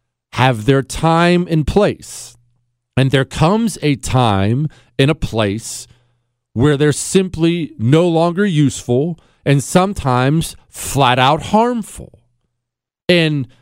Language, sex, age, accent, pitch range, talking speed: English, male, 40-59, American, 120-180 Hz, 110 wpm